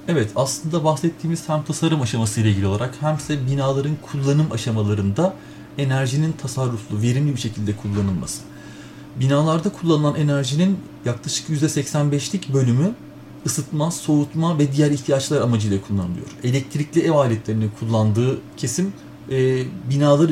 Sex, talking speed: male, 115 wpm